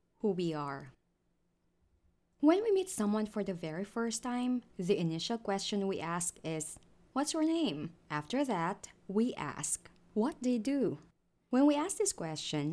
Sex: female